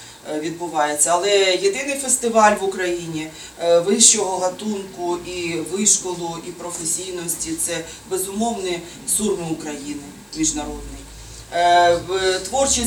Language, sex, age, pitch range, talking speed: Ukrainian, female, 30-49, 175-215 Hz, 85 wpm